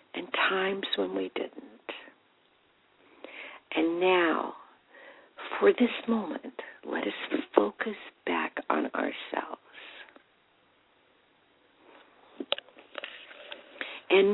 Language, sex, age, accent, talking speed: English, female, 50-69, American, 70 wpm